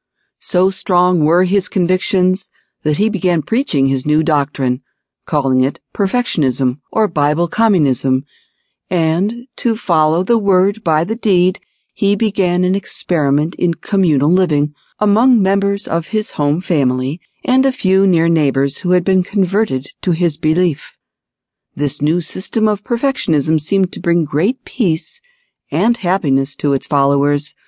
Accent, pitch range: American, 145-200 Hz